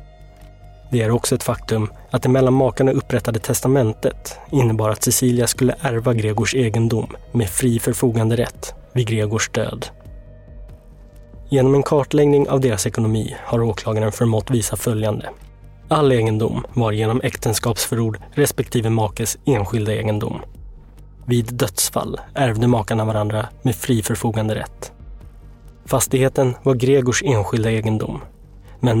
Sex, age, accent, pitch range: male, 20-39, native, 110-125 Hz